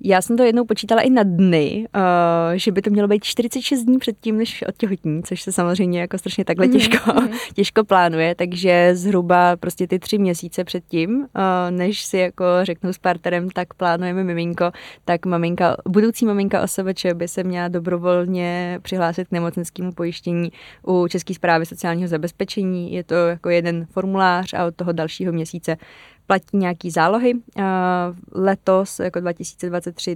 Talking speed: 155 wpm